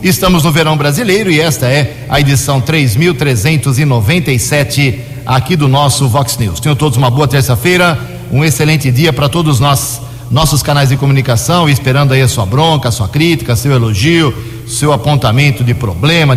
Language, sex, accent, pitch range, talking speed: Portuguese, male, Brazilian, 125-160 Hz, 160 wpm